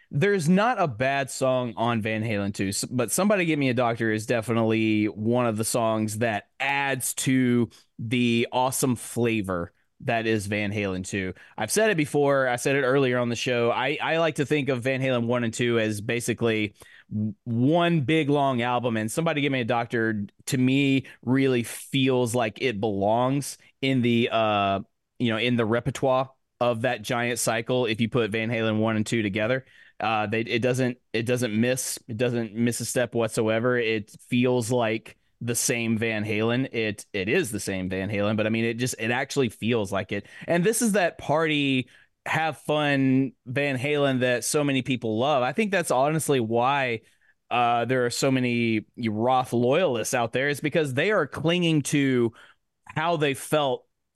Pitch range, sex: 115-135 Hz, male